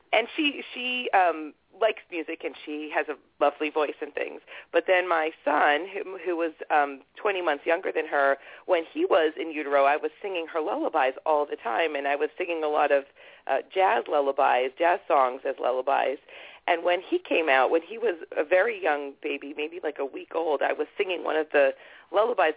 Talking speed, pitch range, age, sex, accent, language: 205 wpm, 150-200 Hz, 40-59, female, American, English